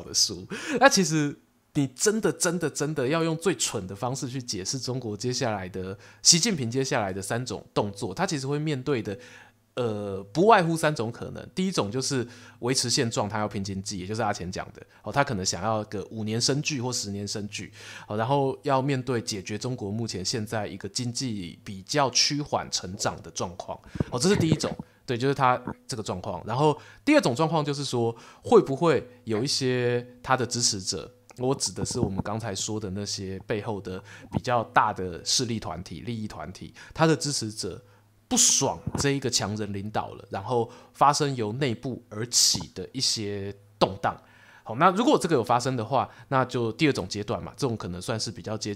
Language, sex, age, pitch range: Chinese, male, 20-39, 105-135 Hz